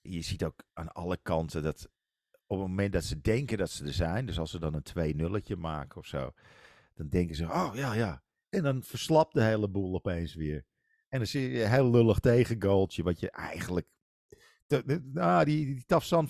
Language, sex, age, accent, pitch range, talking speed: Dutch, male, 50-69, Dutch, 90-120 Hz, 210 wpm